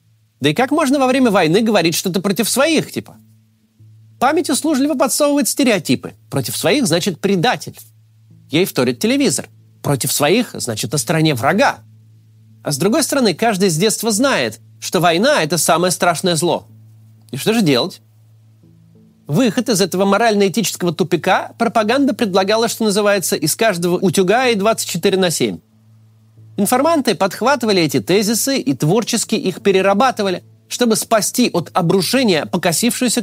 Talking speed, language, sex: 135 wpm, Russian, male